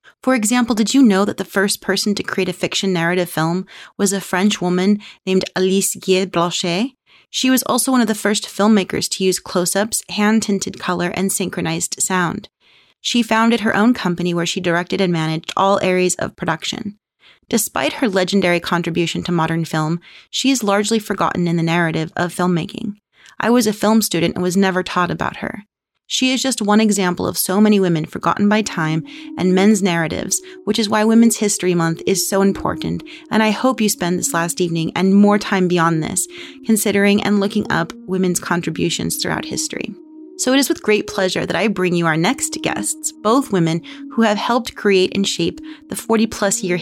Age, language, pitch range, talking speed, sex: 30-49, English, 175-220 Hz, 190 wpm, female